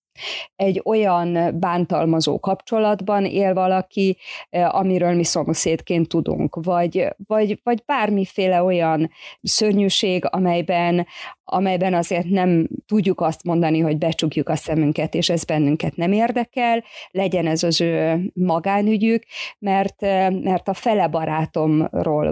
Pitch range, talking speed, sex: 165-195 Hz, 110 wpm, female